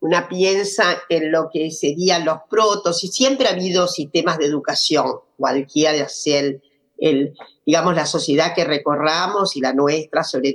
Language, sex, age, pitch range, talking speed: Spanish, female, 50-69, 145-190 Hz, 155 wpm